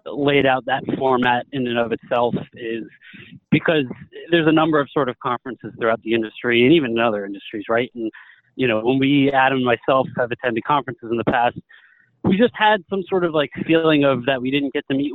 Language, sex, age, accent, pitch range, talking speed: English, male, 30-49, American, 115-140 Hz, 220 wpm